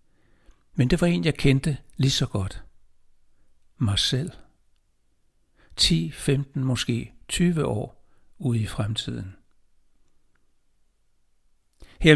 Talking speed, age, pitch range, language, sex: 100 wpm, 60-79, 105-135 Hz, Danish, male